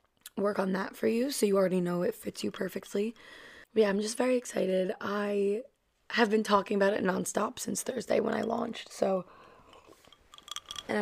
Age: 20-39